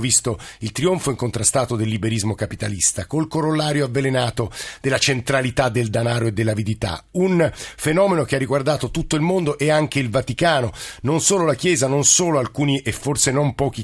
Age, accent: 50-69, native